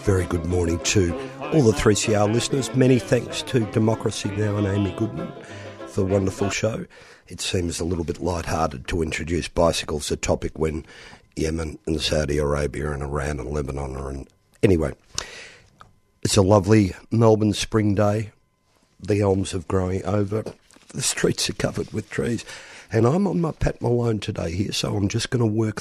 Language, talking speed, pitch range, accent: English, 170 wpm, 85-110 Hz, Australian